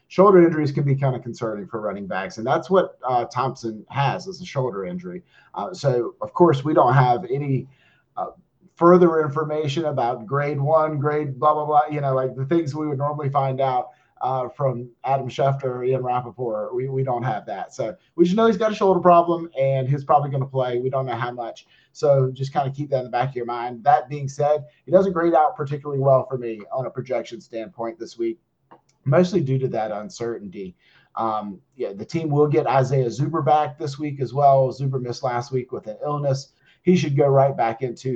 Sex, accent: male, American